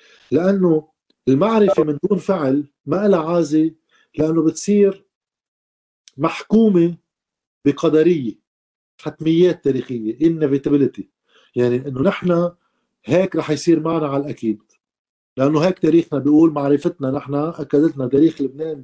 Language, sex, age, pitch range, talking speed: Arabic, male, 50-69, 145-185 Hz, 105 wpm